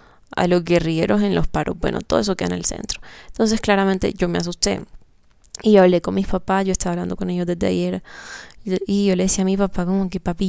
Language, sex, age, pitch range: Spanish, female, 20-39, 170-205 Hz